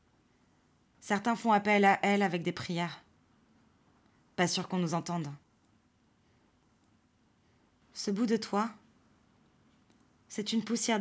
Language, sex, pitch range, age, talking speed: French, female, 170-210 Hz, 20-39, 110 wpm